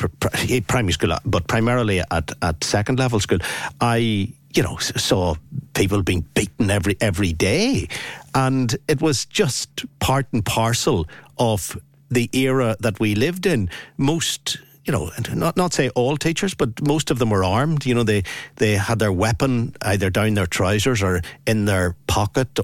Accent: Irish